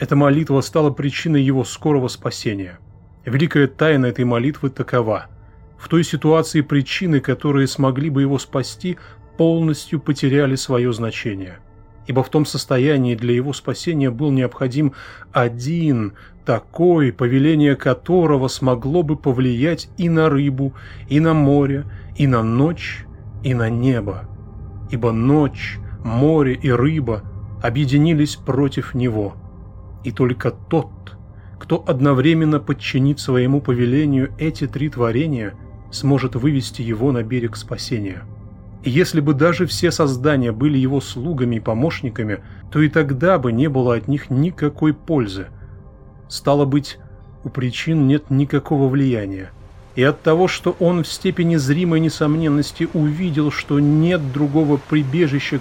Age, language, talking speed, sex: 20-39, Russian, 130 wpm, male